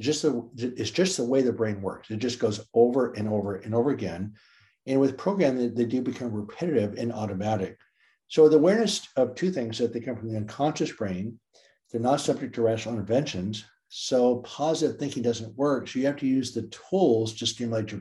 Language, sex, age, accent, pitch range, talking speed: English, male, 60-79, American, 110-140 Hz, 200 wpm